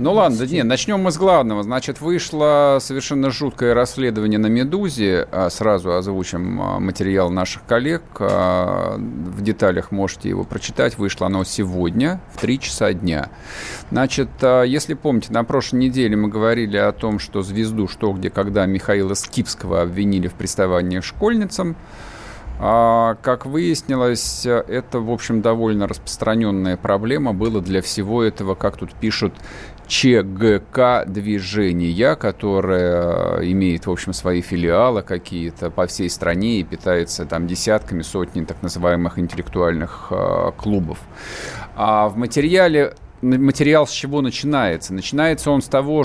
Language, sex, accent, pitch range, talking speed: Russian, male, native, 95-130 Hz, 130 wpm